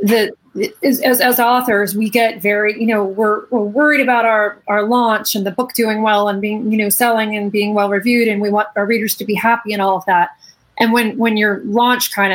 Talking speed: 215 wpm